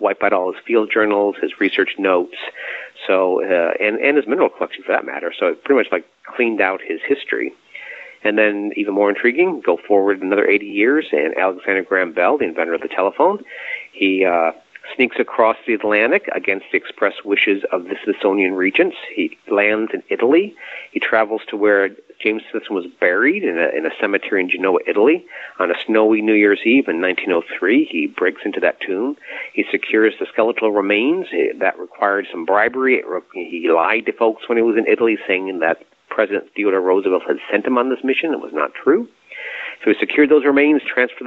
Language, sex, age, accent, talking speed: English, male, 40-59, American, 190 wpm